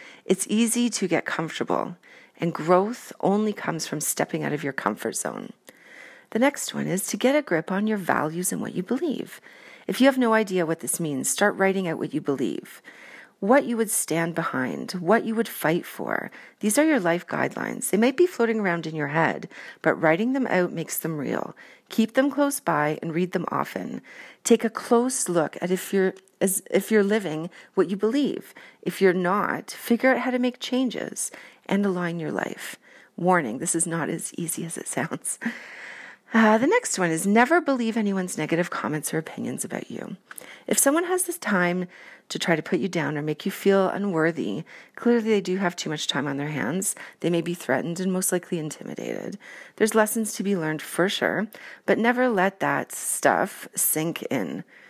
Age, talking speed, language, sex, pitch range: 40-59, 195 wpm, English, female, 170-235 Hz